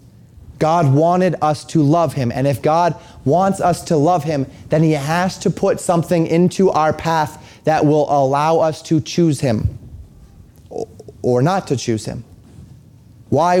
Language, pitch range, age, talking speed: English, 130-160 Hz, 30-49, 160 wpm